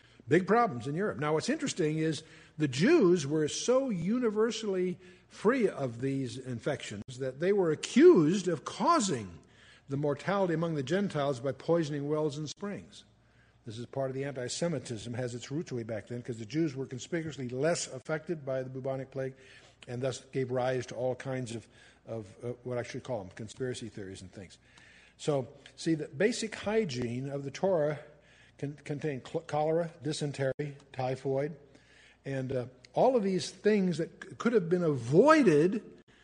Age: 60-79